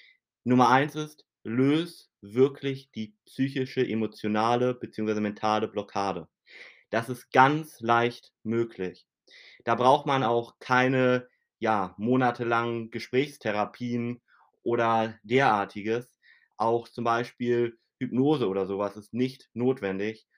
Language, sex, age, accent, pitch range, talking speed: German, male, 30-49, German, 110-125 Hz, 105 wpm